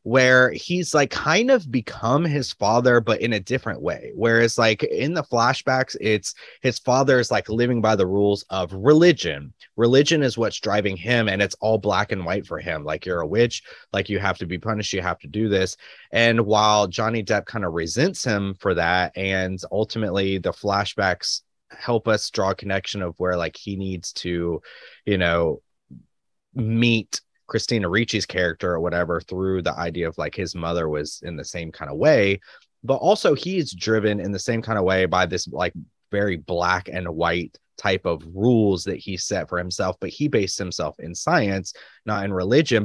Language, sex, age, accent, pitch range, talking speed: English, male, 30-49, American, 95-115 Hz, 190 wpm